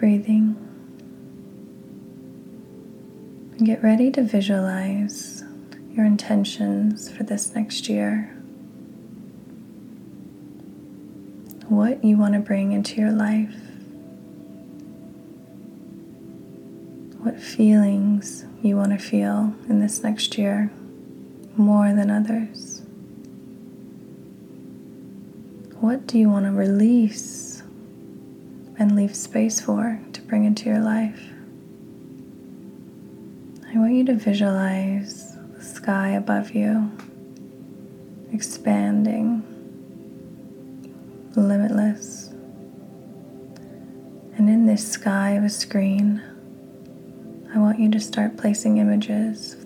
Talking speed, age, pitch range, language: 90 wpm, 20-39, 195-220 Hz, English